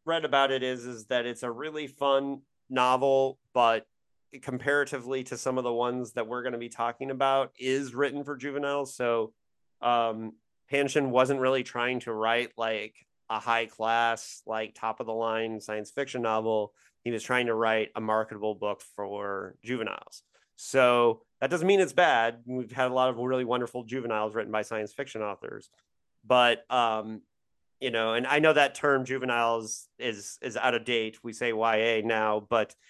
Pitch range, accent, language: 115-135 Hz, American, English